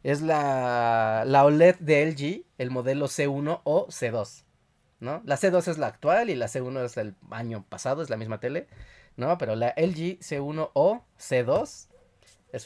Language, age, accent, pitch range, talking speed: Spanish, 30-49, Mexican, 110-150 Hz, 170 wpm